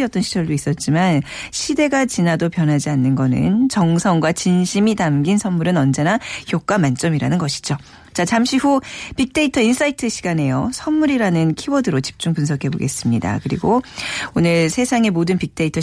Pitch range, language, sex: 150-235 Hz, Korean, female